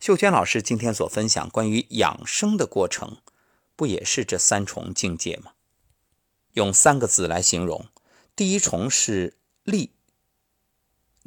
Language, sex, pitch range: Chinese, male, 95-155 Hz